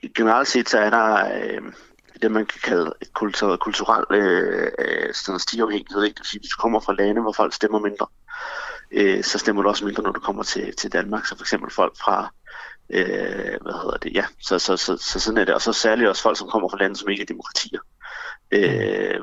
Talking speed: 215 wpm